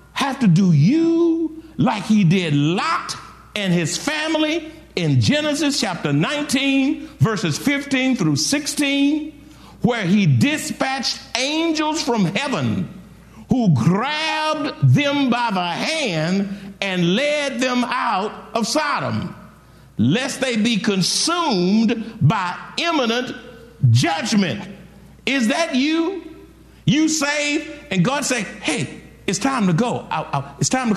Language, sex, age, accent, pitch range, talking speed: English, male, 50-69, American, 175-265 Hz, 115 wpm